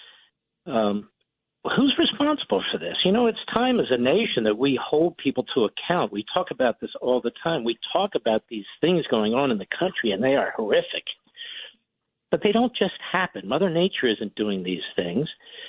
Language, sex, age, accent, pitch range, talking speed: English, male, 50-69, American, 120-180 Hz, 190 wpm